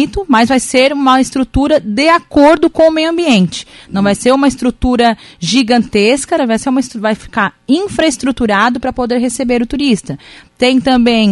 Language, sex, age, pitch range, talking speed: Portuguese, female, 30-49, 200-255 Hz, 165 wpm